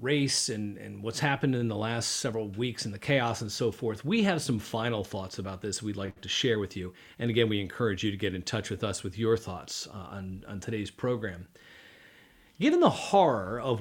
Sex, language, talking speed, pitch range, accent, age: male, English, 225 wpm, 100-135 Hz, American, 40-59